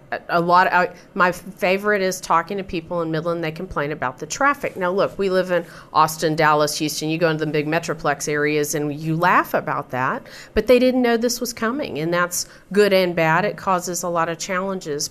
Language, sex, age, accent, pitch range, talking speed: English, female, 40-59, American, 155-195 Hz, 215 wpm